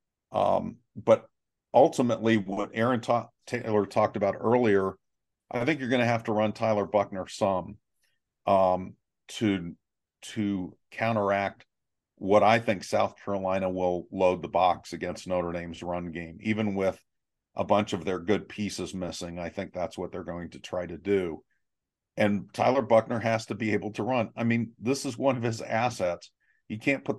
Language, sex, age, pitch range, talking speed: English, male, 50-69, 95-115 Hz, 170 wpm